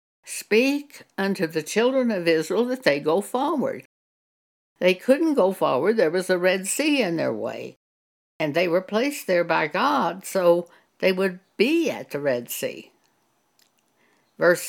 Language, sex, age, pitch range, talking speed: English, female, 60-79, 150-235 Hz, 155 wpm